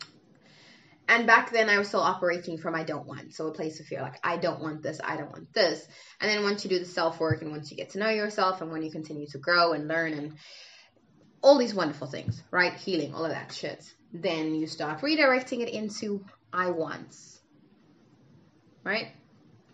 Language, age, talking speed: English, 20-39, 205 wpm